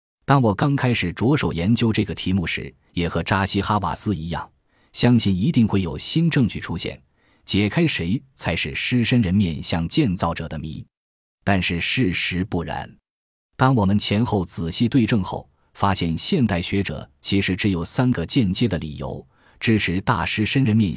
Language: Chinese